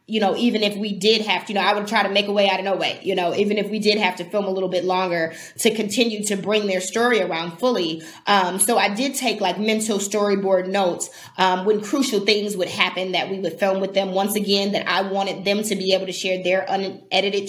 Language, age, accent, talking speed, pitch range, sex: English, 20-39, American, 260 wpm, 185-230 Hz, female